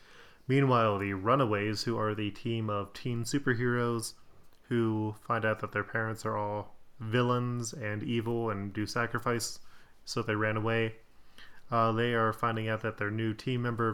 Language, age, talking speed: English, 20-39, 165 wpm